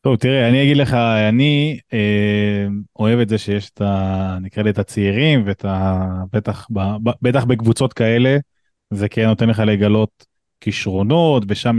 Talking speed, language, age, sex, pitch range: 145 wpm, Hebrew, 20-39, male, 105-135 Hz